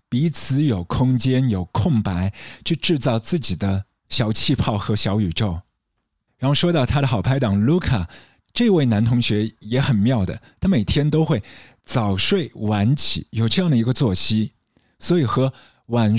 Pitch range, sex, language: 105-140 Hz, male, Chinese